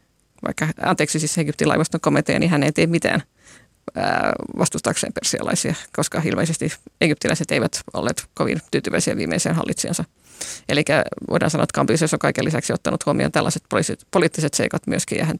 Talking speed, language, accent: 150 wpm, Finnish, native